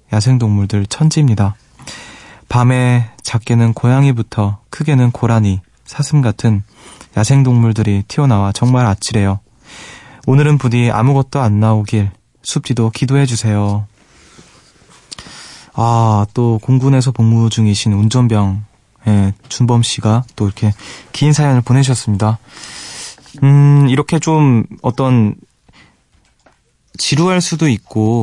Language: Korean